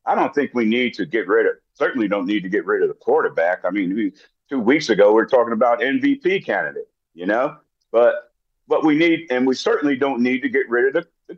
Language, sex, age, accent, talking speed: English, male, 50-69, American, 260 wpm